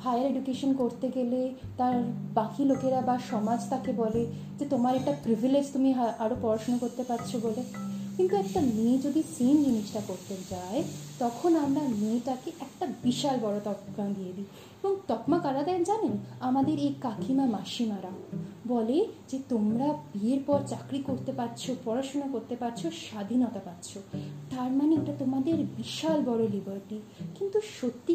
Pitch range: 220-310 Hz